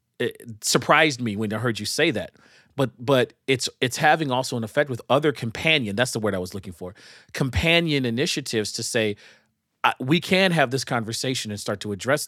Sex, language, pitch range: male, English, 105-130 Hz